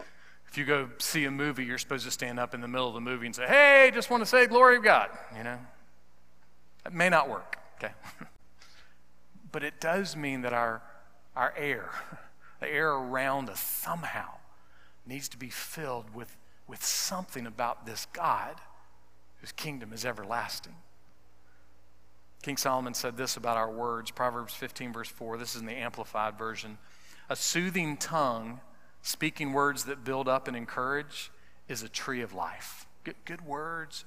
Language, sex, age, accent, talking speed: English, male, 40-59, American, 170 wpm